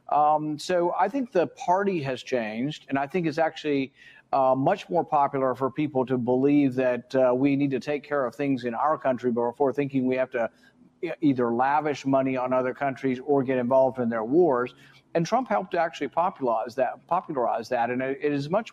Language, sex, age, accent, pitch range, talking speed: English, male, 50-69, American, 130-155 Hz, 200 wpm